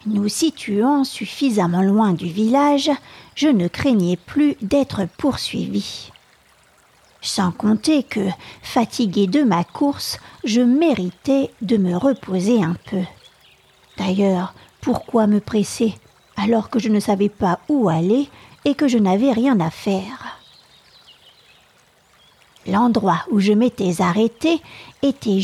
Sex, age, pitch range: female, 50-69, 190-245 Hz